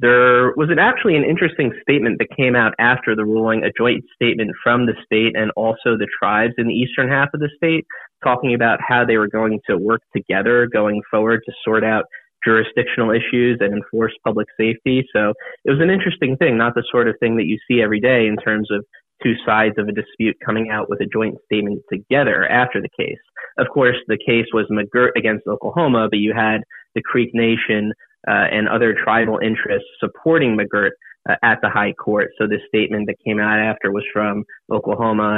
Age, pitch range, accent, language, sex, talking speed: 30-49, 105-120 Hz, American, English, male, 200 wpm